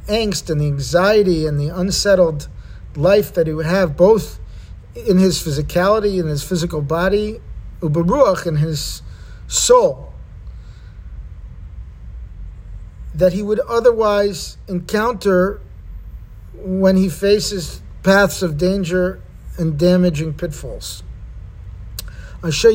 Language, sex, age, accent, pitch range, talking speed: English, male, 50-69, American, 155-215 Hz, 100 wpm